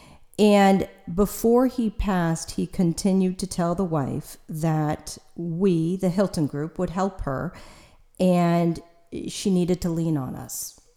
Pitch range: 165-200 Hz